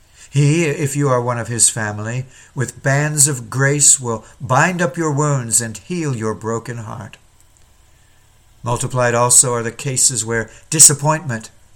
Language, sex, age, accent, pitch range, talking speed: English, male, 60-79, American, 115-155 Hz, 150 wpm